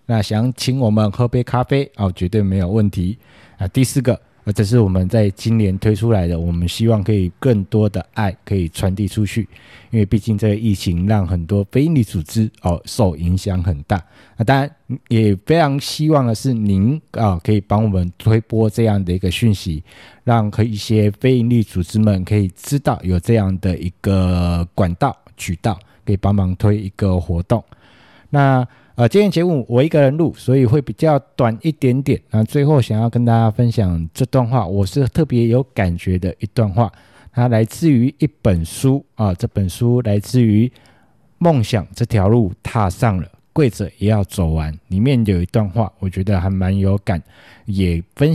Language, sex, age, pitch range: Chinese, male, 20-39, 95-125 Hz